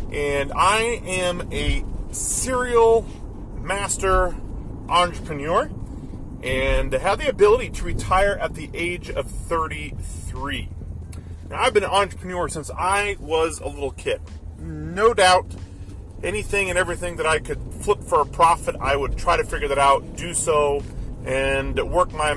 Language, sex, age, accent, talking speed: English, male, 40-59, American, 140 wpm